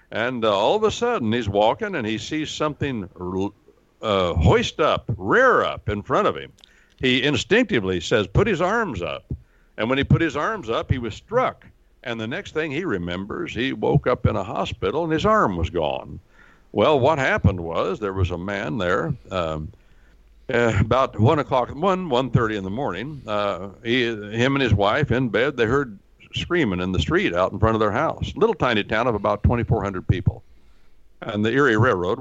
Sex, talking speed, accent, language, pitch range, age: male, 200 wpm, American, English, 100-135 Hz, 60-79